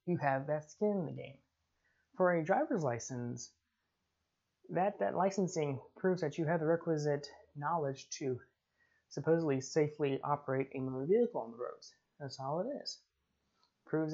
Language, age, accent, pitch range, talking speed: English, 20-39, American, 135-180 Hz, 155 wpm